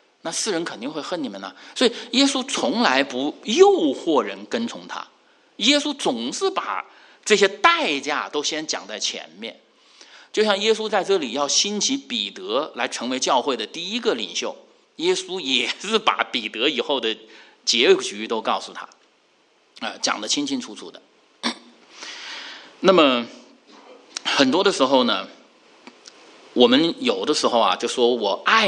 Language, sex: English, male